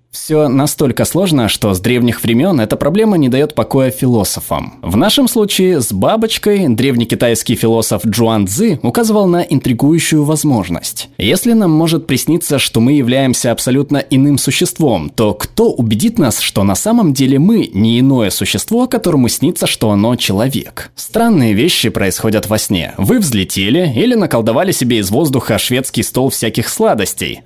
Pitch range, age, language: 115-170 Hz, 20-39, Russian